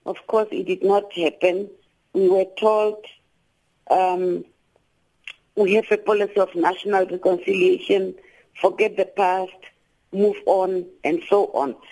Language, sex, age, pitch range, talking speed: English, female, 50-69, 185-255 Hz, 125 wpm